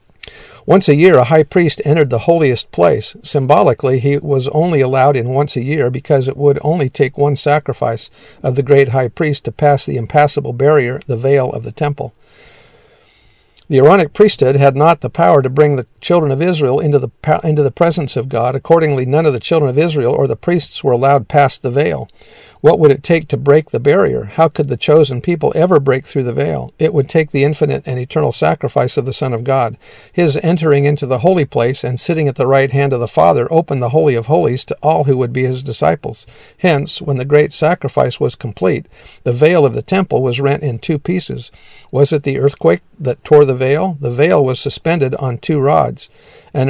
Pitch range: 130-155 Hz